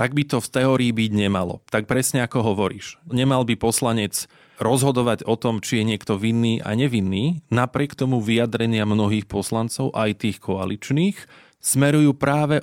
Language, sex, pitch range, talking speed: Slovak, male, 110-130 Hz, 155 wpm